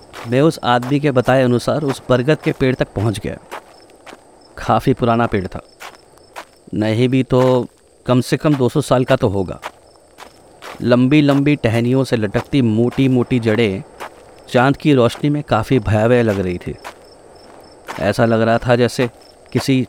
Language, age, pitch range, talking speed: Hindi, 30-49, 110-135 Hz, 155 wpm